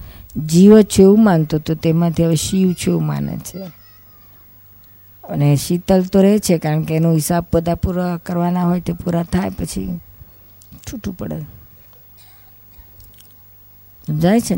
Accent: native